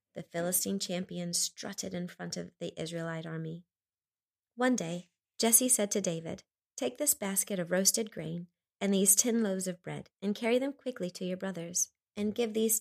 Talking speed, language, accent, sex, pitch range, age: 180 wpm, English, American, female, 175-210 Hz, 30-49